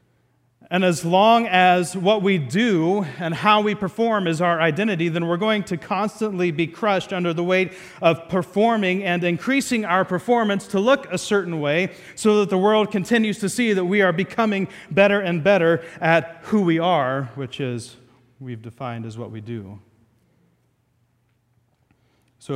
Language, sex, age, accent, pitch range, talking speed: English, male, 30-49, American, 135-180 Hz, 165 wpm